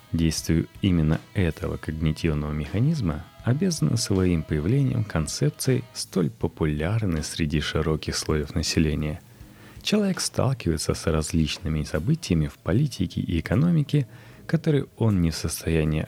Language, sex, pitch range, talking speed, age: Russian, male, 80-125 Hz, 110 wpm, 30-49